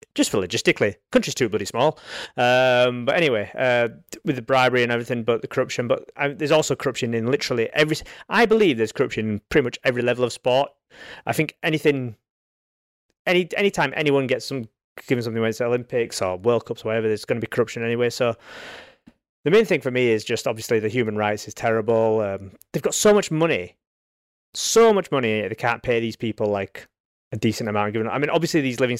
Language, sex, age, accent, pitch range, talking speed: English, male, 30-49, British, 110-140 Hz, 210 wpm